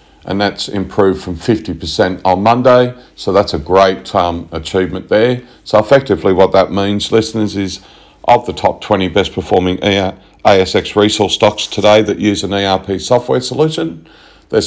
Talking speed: 155 wpm